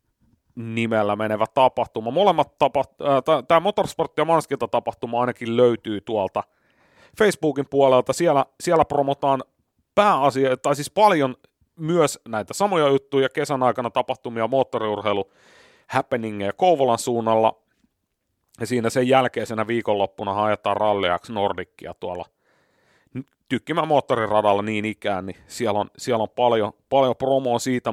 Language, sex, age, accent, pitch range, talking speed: Finnish, male, 30-49, native, 115-150 Hz, 115 wpm